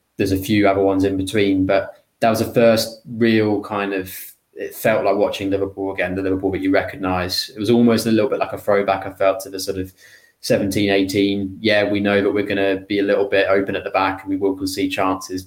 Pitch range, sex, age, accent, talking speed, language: 95-100 Hz, male, 20-39, British, 240 wpm, English